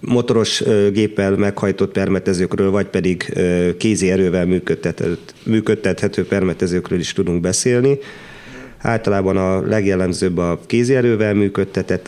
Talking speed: 100 wpm